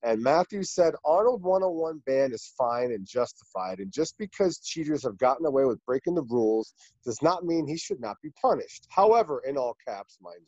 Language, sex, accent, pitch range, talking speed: English, male, American, 135-205 Hz, 195 wpm